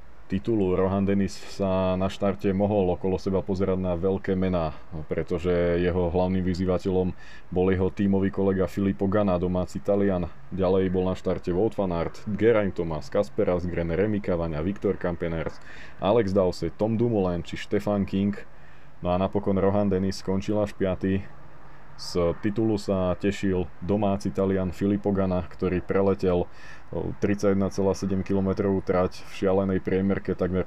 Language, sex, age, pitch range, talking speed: Slovak, male, 20-39, 90-100 Hz, 135 wpm